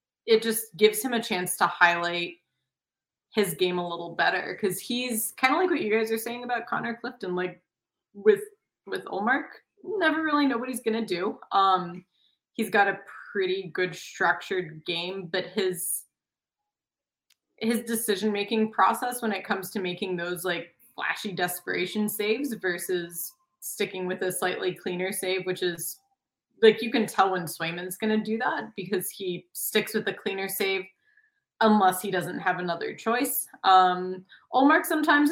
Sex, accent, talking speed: female, American, 160 wpm